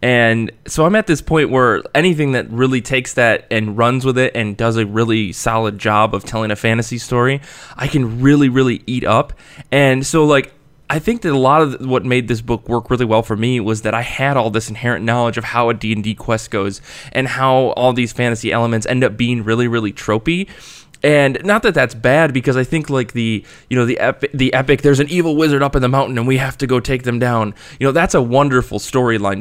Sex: male